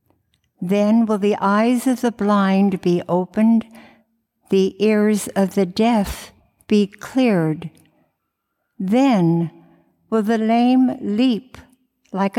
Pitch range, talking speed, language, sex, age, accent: 180-225 Hz, 105 wpm, English, female, 60-79, American